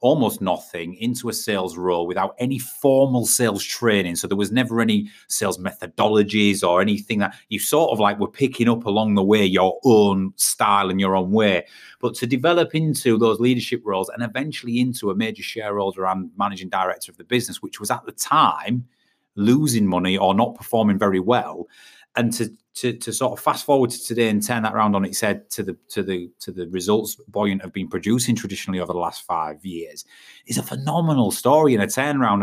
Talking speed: 205 wpm